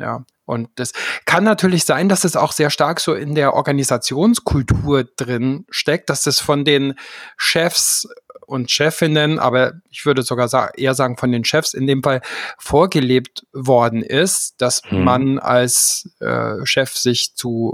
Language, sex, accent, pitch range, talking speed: German, male, German, 130-165 Hz, 160 wpm